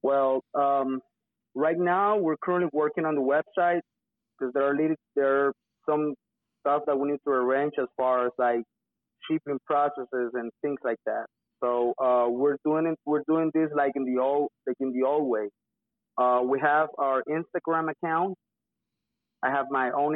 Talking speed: 175 wpm